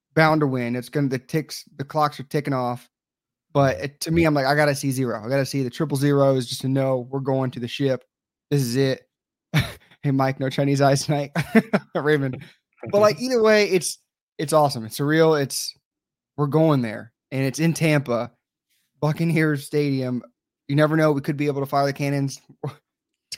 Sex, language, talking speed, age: male, English, 200 wpm, 20-39